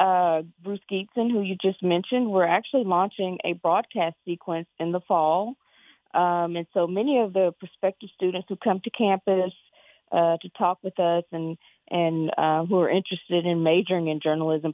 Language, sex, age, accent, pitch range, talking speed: English, female, 40-59, American, 160-190 Hz, 175 wpm